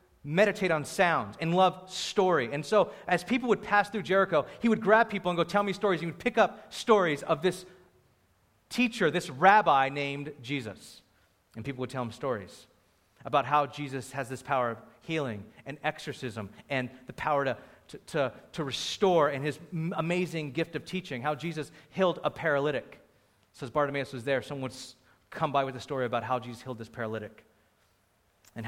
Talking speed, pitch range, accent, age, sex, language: 180 wpm, 115-155 Hz, American, 30-49, male, English